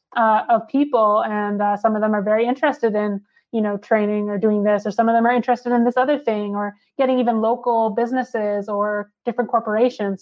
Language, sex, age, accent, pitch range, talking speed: English, female, 20-39, American, 210-240 Hz, 210 wpm